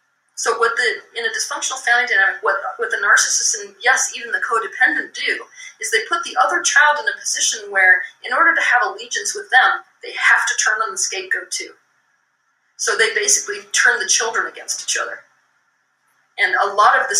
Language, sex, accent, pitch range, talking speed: English, female, American, 275-440 Hz, 200 wpm